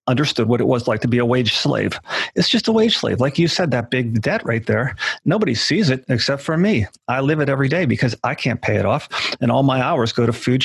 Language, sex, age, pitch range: English, male, 40-59, 115-140 Hz